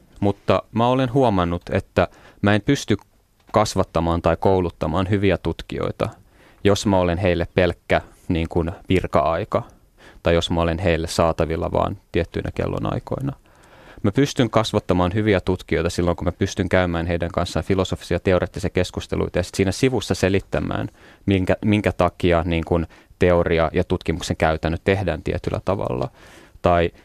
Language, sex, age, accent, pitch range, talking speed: Finnish, male, 30-49, native, 85-100 Hz, 140 wpm